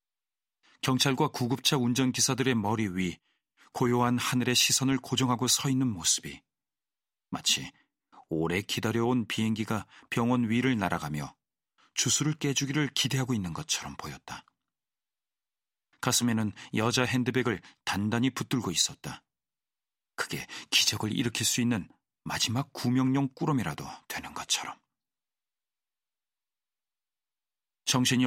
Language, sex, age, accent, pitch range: Korean, male, 40-59, native, 105-130 Hz